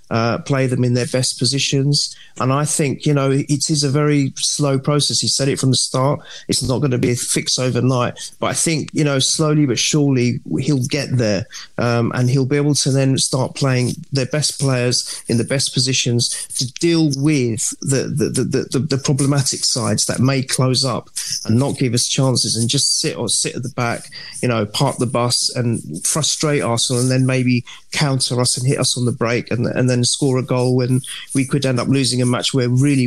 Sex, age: male, 40-59